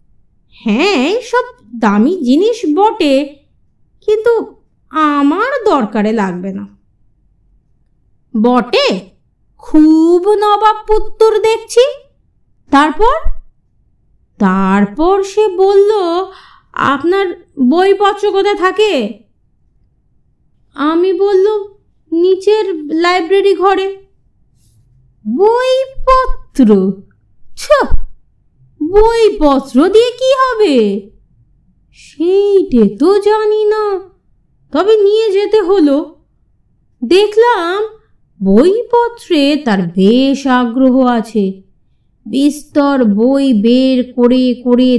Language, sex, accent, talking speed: Bengali, female, native, 70 wpm